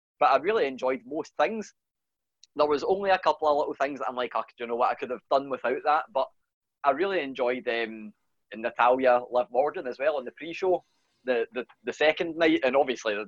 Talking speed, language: 215 wpm, English